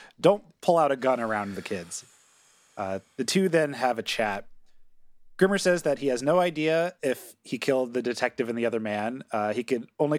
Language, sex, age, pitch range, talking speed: English, male, 30-49, 115-155 Hz, 205 wpm